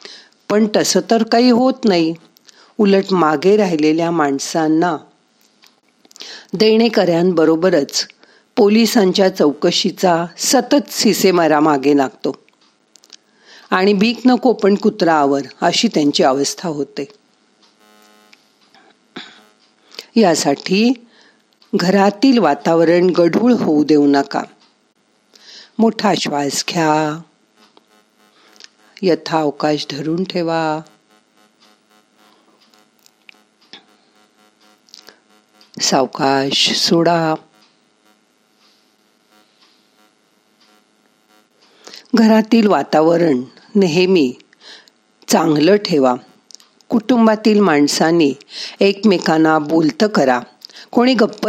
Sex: female